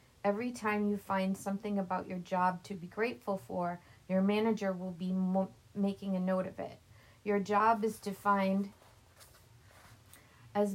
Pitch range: 180-205 Hz